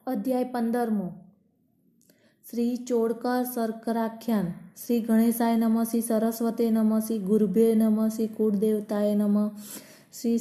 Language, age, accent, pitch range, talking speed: Gujarati, 20-39, native, 200-215 Hz, 85 wpm